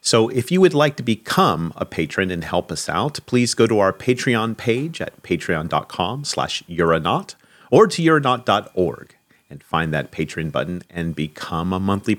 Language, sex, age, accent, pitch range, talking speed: English, male, 40-59, American, 90-135 Hz, 165 wpm